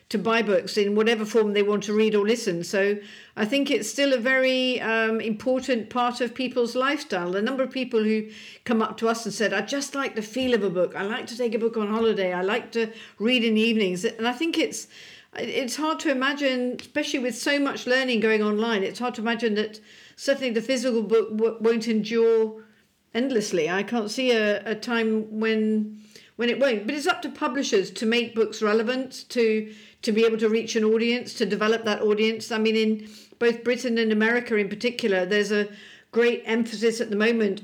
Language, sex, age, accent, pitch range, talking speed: English, female, 50-69, British, 210-240 Hz, 215 wpm